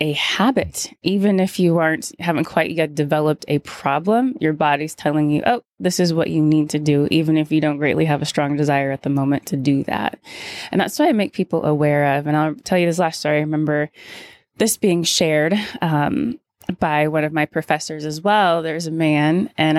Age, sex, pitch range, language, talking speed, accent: 20-39, female, 150-175 Hz, English, 215 wpm, American